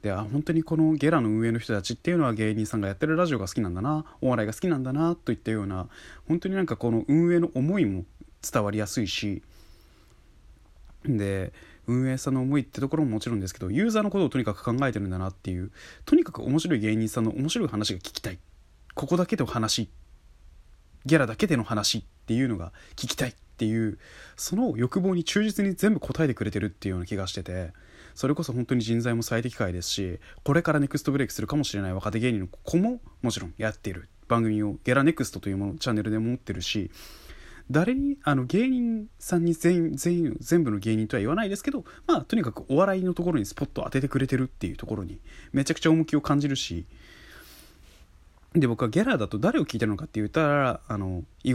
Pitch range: 95-150 Hz